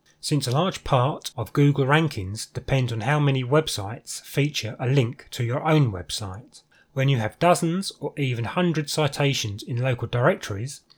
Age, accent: 30-49, British